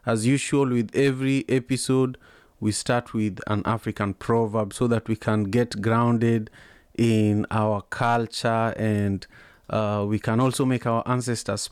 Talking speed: 145 wpm